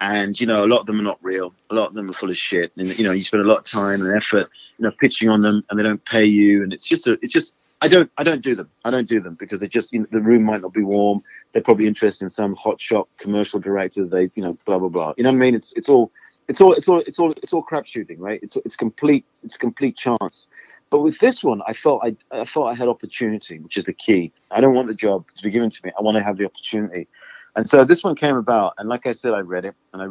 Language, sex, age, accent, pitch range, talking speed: English, male, 30-49, British, 105-150 Hz, 305 wpm